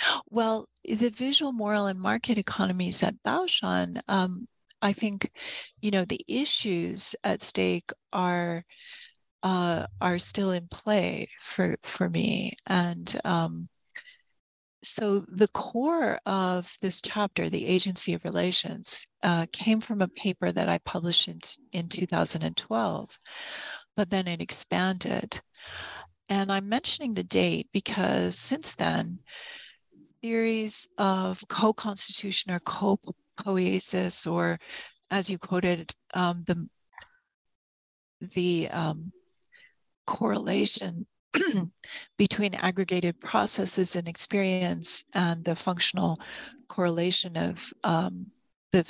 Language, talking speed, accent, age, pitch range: English, 110 wpm, American, 40-59, 180-220 Hz